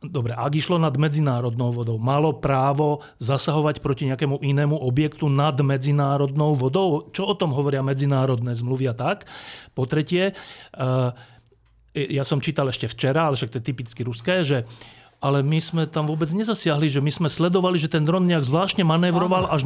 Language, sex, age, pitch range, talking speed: Slovak, male, 40-59, 130-175 Hz, 165 wpm